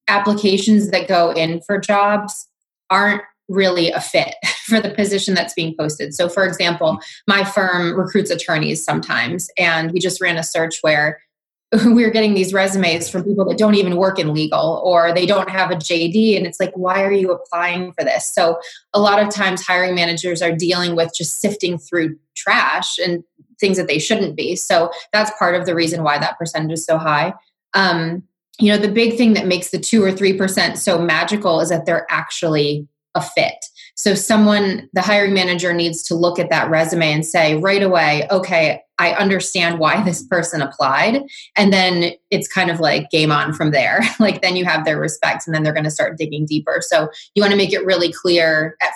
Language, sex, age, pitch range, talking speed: English, female, 20-39, 165-200 Hz, 205 wpm